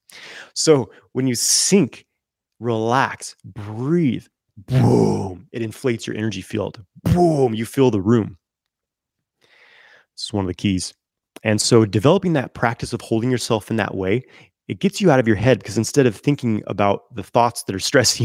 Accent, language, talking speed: American, English, 170 wpm